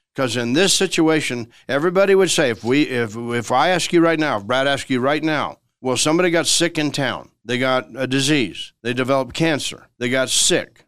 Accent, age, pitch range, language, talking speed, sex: American, 60-79, 120-160 Hz, English, 210 wpm, male